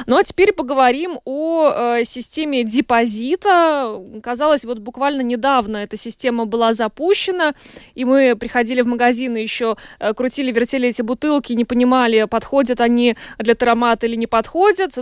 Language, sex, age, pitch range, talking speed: Russian, female, 20-39, 235-285 Hz, 145 wpm